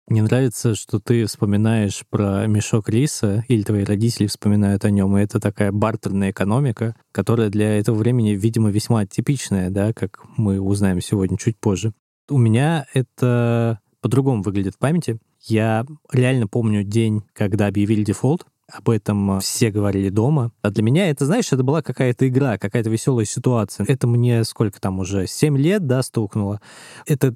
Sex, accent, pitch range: male, native, 110-140 Hz